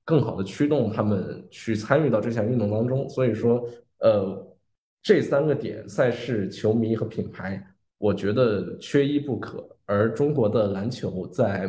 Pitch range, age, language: 100-115 Hz, 20-39, Chinese